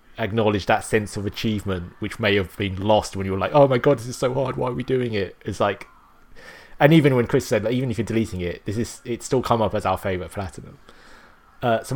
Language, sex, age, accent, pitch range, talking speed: English, male, 30-49, British, 95-125 Hz, 260 wpm